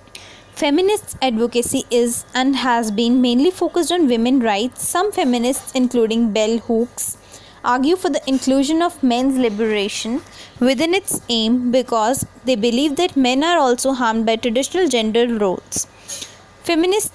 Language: English